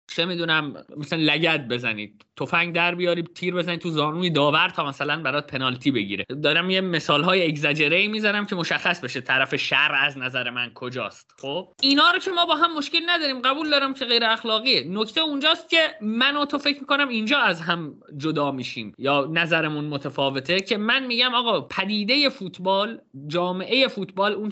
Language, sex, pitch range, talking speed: Persian, male, 170-245 Hz, 175 wpm